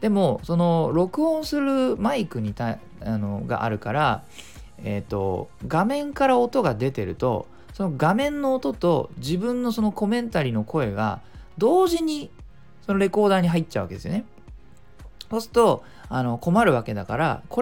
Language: Japanese